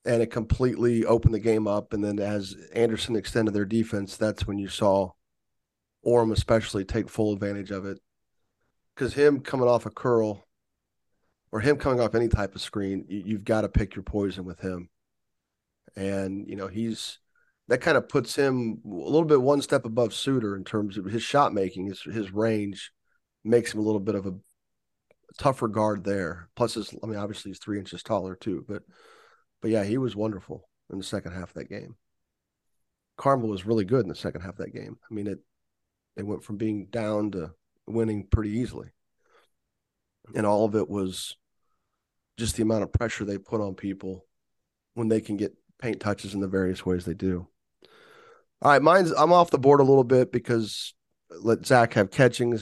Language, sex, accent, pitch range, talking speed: English, male, American, 100-115 Hz, 195 wpm